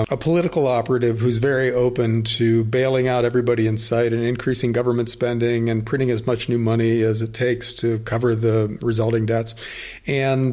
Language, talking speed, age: English, 175 wpm, 40-59